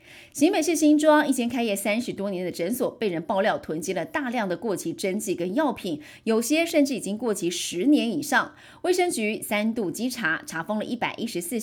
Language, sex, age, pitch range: Chinese, female, 30-49, 195-290 Hz